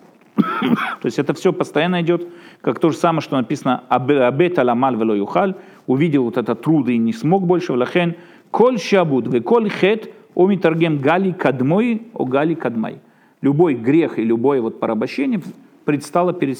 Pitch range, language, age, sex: 150-210 Hz, Russian, 40-59, male